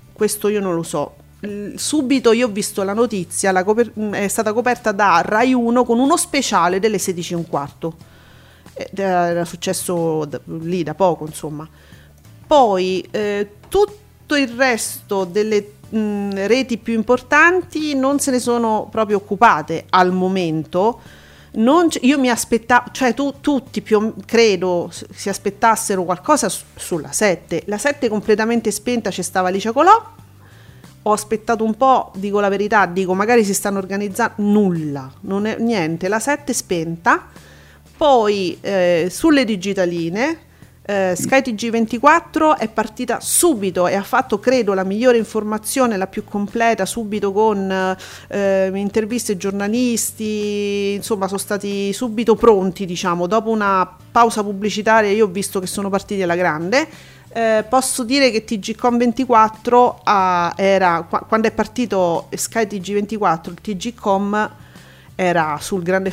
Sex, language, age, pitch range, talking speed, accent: female, Italian, 40-59, 190-235 Hz, 140 wpm, native